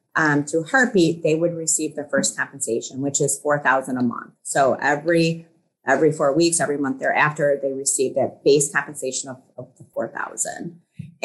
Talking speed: 165 wpm